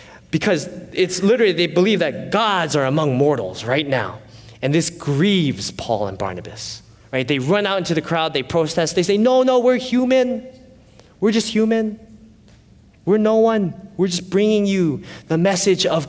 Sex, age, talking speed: male, 20-39, 170 wpm